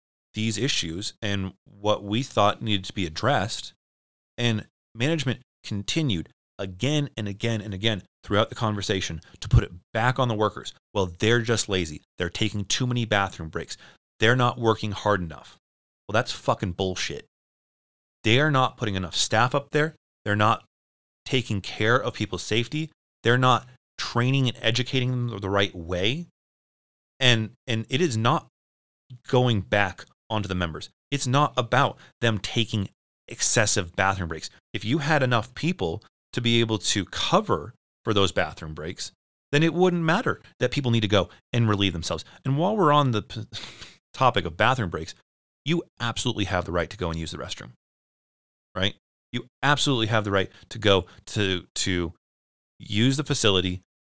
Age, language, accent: 30-49, English, American